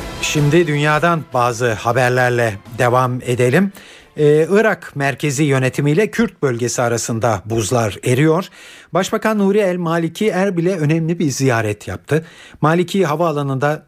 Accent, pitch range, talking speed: native, 115-155 Hz, 110 wpm